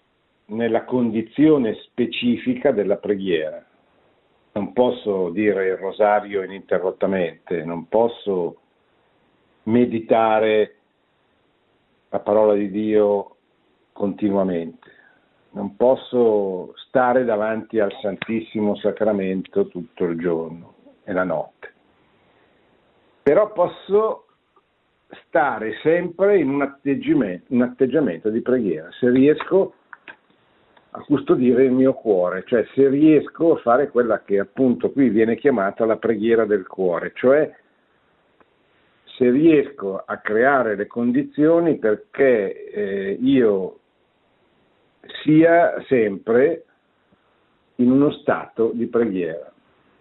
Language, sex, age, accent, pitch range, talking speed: Italian, male, 50-69, native, 105-155 Hz, 95 wpm